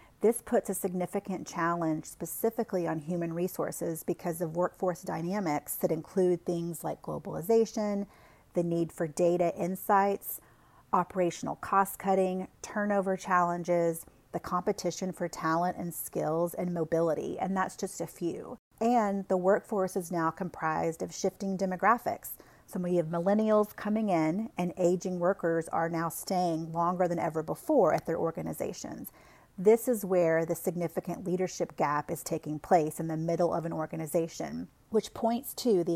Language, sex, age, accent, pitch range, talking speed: English, female, 40-59, American, 165-195 Hz, 150 wpm